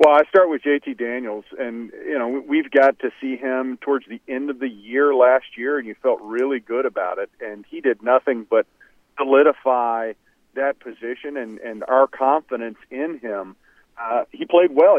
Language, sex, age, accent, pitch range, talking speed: English, male, 40-59, American, 125-165 Hz, 190 wpm